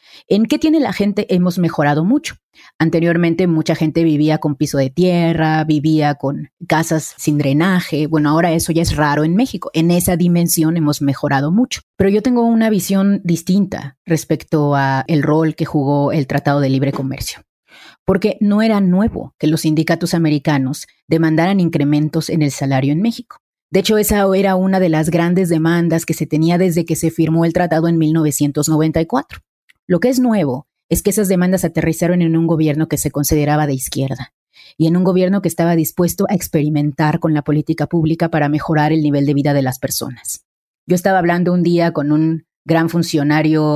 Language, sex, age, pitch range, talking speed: Spanish, female, 30-49, 150-175 Hz, 185 wpm